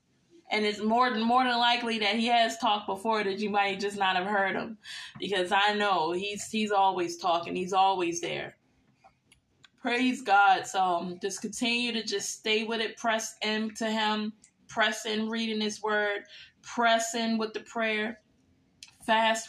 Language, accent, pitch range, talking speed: English, American, 195-220 Hz, 170 wpm